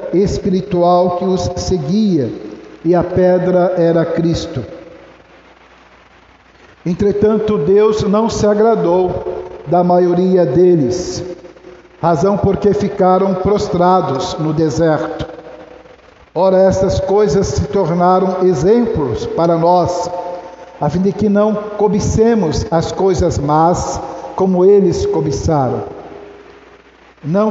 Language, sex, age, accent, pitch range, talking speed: Portuguese, male, 60-79, Brazilian, 175-205 Hz, 95 wpm